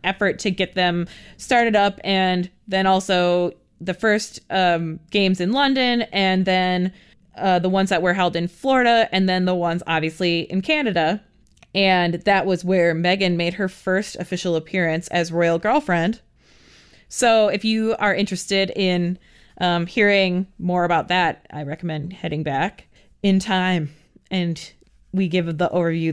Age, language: 20-39, English